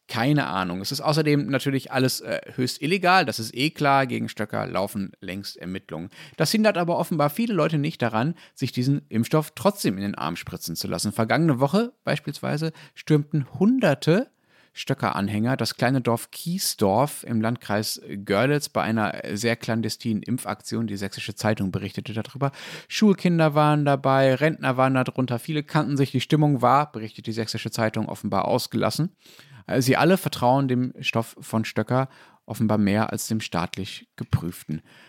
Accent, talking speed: German, 155 wpm